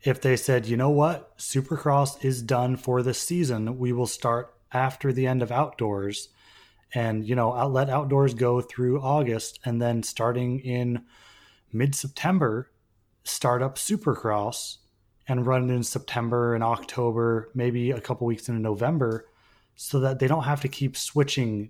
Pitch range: 115-135 Hz